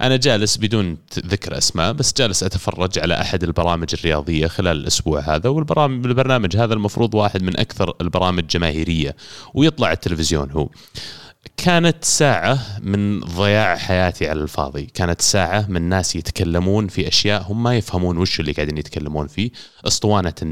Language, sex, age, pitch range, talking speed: Arabic, male, 30-49, 85-105 Hz, 145 wpm